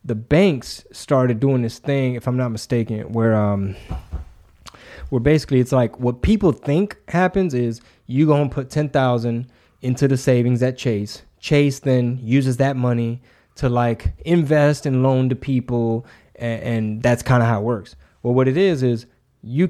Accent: American